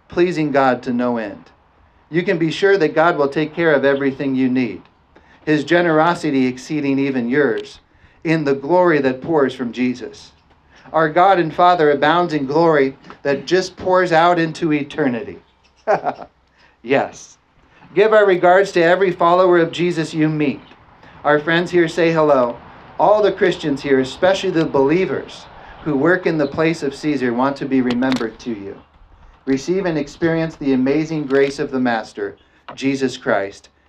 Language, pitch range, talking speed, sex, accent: English, 125-160 Hz, 160 wpm, male, American